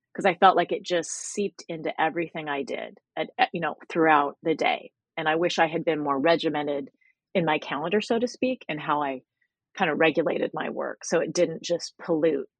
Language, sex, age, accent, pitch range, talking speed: English, female, 30-49, American, 145-175 Hz, 215 wpm